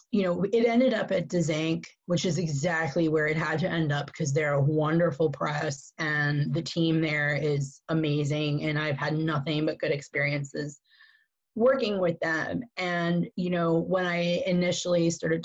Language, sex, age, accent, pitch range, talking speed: English, female, 20-39, American, 155-175 Hz, 170 wpm